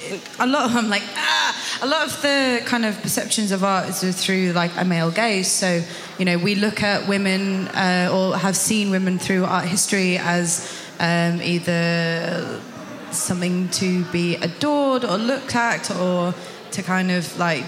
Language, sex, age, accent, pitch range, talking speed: English, female, 20-39, British, 175-205 Hz, 175 wpm